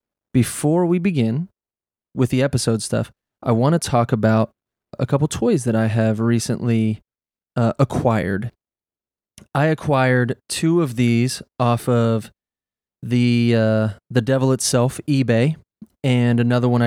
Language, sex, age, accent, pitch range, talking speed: English, male, 20-39, American, 115-130 Hz, 125 wpm